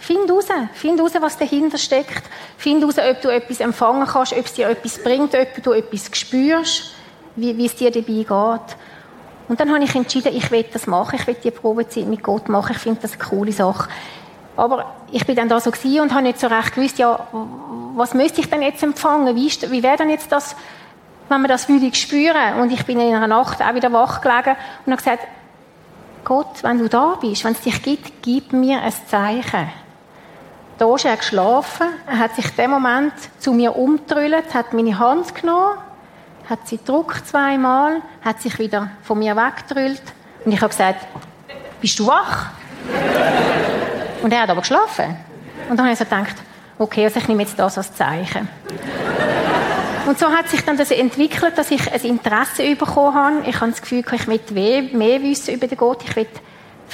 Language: German